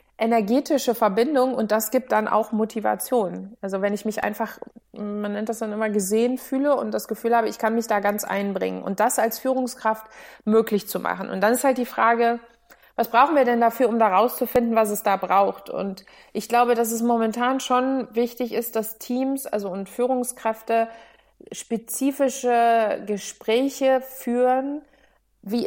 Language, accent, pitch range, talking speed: German, German, 210-245 Hz, 170 wpm